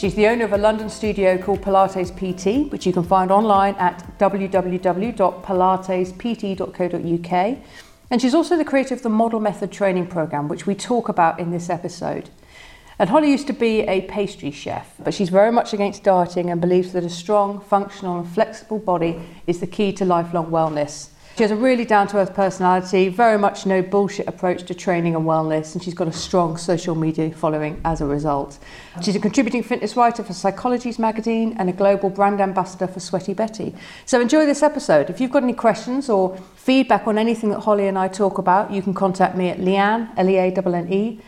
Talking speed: 190 wpm